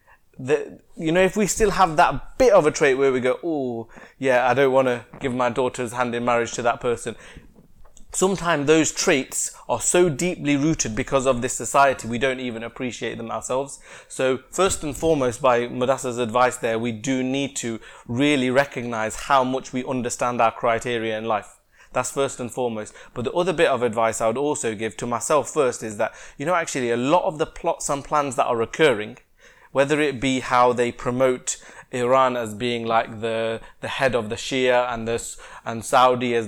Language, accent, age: English, British, 20-39